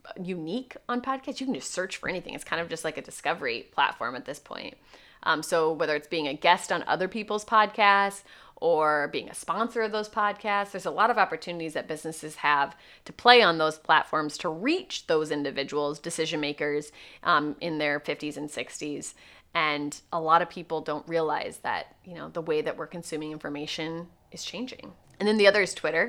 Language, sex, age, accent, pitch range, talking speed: English, female, 20-39, American, 155-195 Hz, 200 wpm